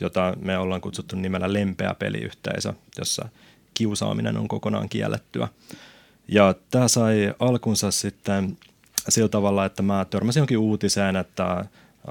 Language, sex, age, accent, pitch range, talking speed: Finnish, male, 30-49, native, 95-110 Hz, 125 wpm